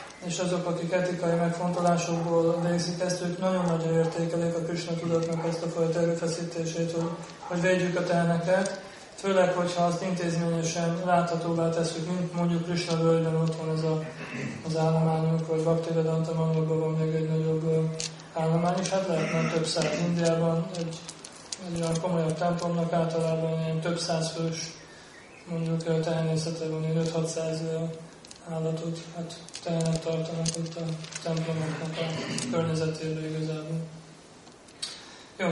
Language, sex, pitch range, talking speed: Hungarian, male, 165-170 Hz, 130 wpm